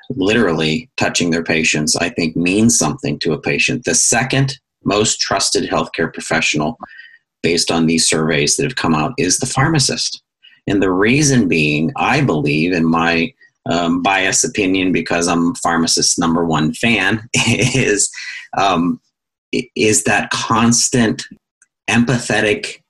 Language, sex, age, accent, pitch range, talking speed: English, male, 40-59, American, 85-115 Hz, 135 wpm